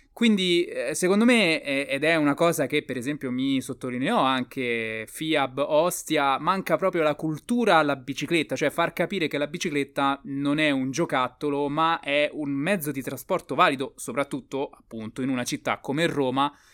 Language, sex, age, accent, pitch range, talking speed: Italian, male, 20-39, native, 120-155 Hz, 160 wpm